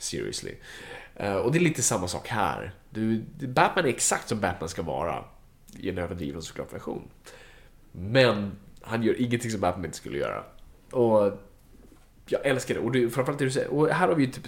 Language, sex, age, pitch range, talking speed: Swedish, male, 20-39, 105-140 Hz, 185 wpm